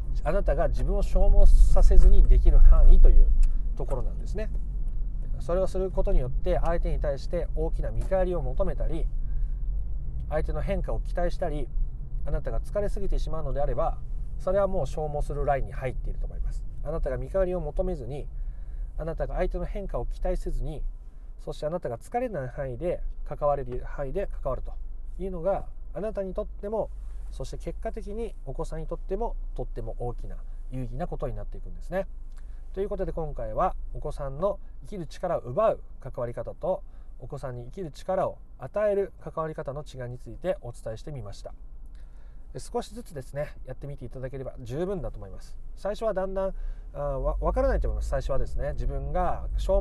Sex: male